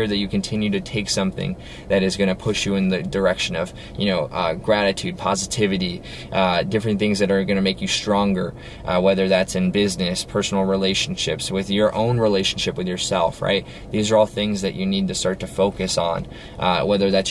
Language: English